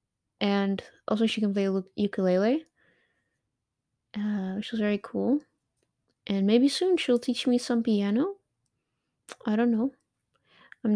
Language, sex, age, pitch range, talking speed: English, female, 20-39, 195-250 Hz, 125 wpm